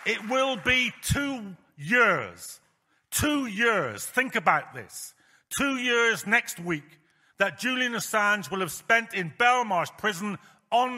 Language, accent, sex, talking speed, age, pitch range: English, British, male, 130 wpm, 50-69, 215-260 Hz